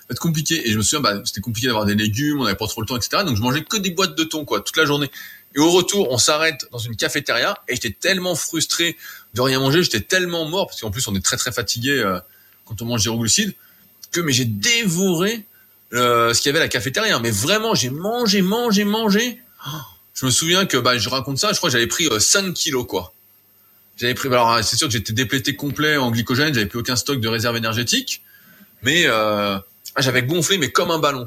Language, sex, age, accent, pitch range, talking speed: French, male, 20-39, French, 110-160 Hz, 240 wpm